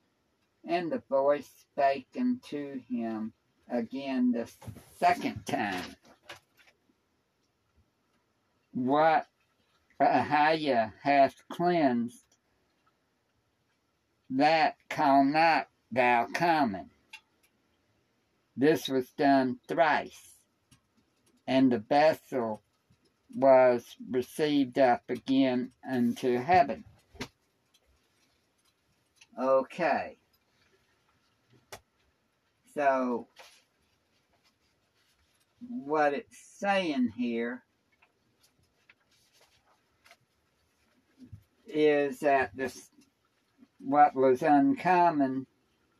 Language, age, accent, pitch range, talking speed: English, 60-79, American, 125-150 Hz, 55 wpm